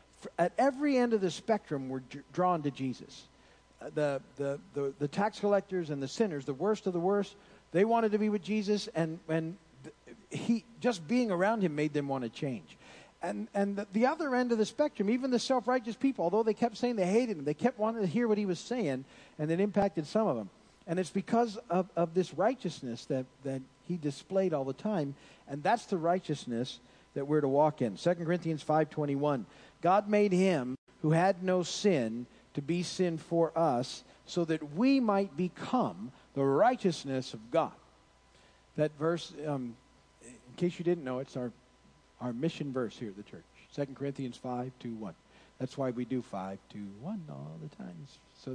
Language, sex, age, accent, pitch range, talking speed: English, male, 50-69, American, 135-200 Hz, 195 wpm